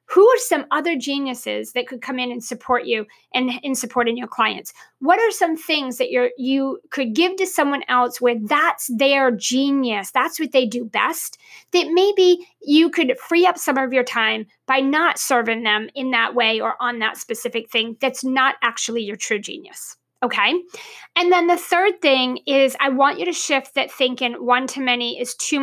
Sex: female